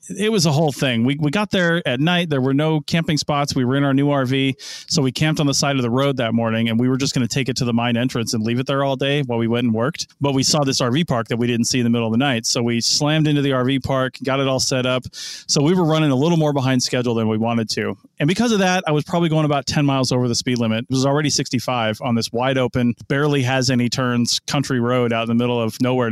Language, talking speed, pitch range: English, 305 wpm, 120-145 Hz